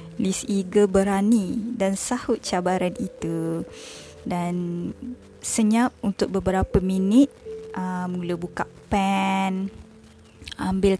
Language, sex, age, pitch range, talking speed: Malay, female, 20-39, 180-225 Hz, 95 wpm